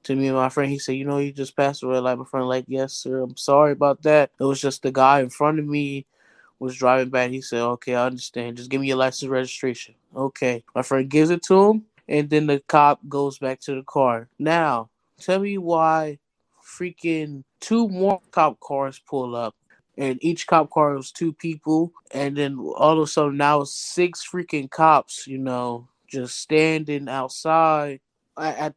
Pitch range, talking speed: 135-160 Hz, 200 wpm